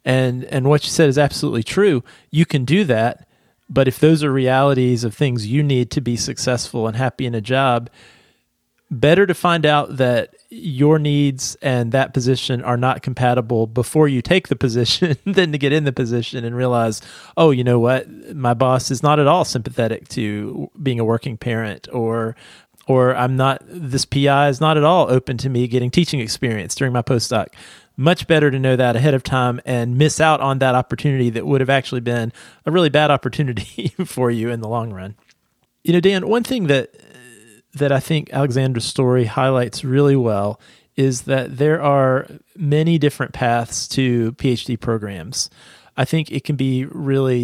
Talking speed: 190 wpm